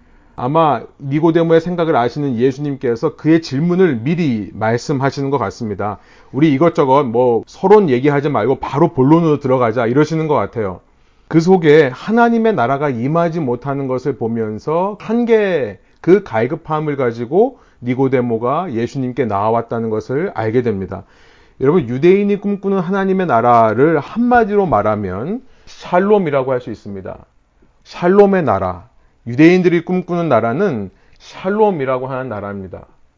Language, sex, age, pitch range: Korean, male, 40-59, 115-175 Hz